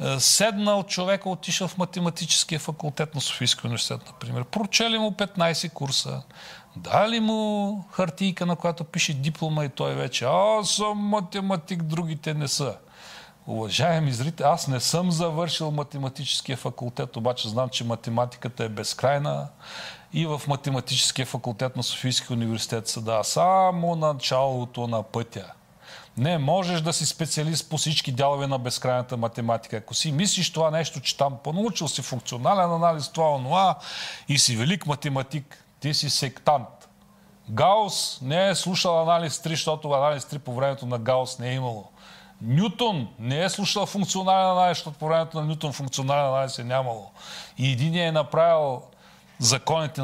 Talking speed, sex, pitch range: 150 wpm, male, 125-170 Hz